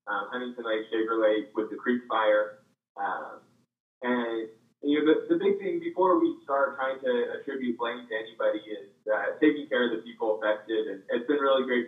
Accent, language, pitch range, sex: American, English, 110-140 Hz, male